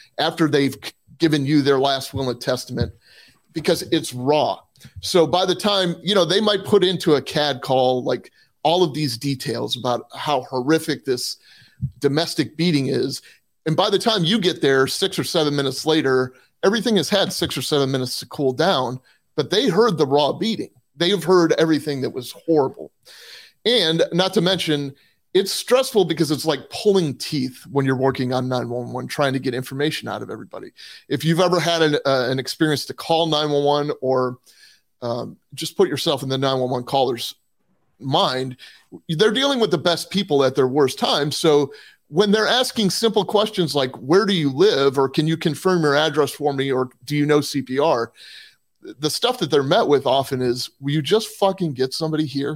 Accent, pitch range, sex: American, 135-175 Hz, male